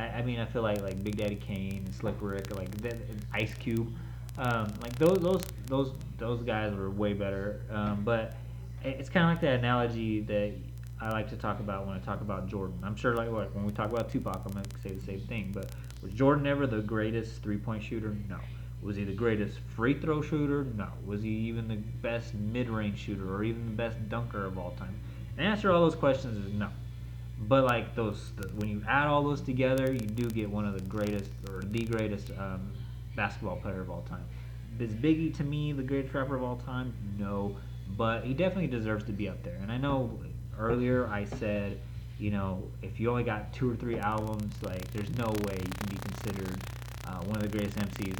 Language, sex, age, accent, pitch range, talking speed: English, male, 20-39, American, 105-120 Hz, 225 wpm